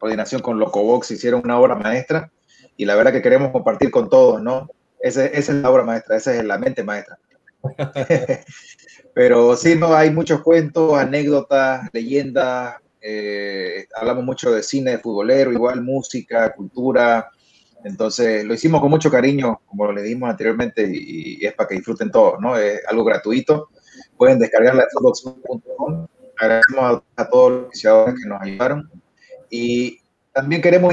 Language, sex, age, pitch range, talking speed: Spanish, male, 30-49, 120-165 Hz, 155 wpm